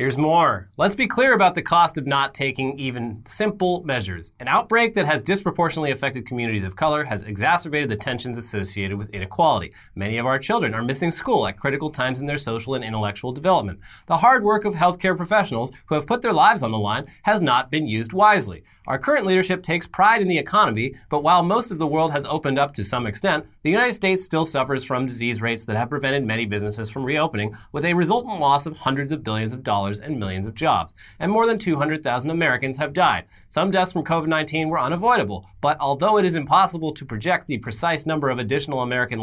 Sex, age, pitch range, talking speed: male, 30-49, 120-170 Hz, 215 wpm